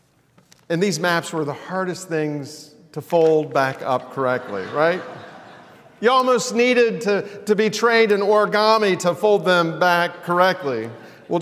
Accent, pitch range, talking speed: American, 160-220 Hz, 145 wpm